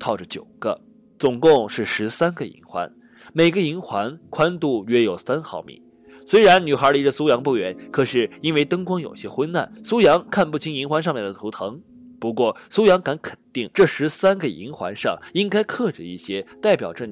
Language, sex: Chinese, male